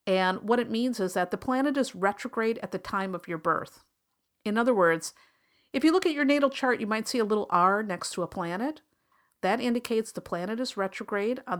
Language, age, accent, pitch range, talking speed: English, 50-69, American, 180-245 Hz, 220 wpm